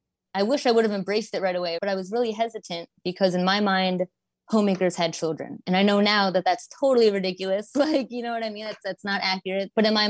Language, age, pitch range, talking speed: English, 20-39, 185-225 Hz, 250 wpm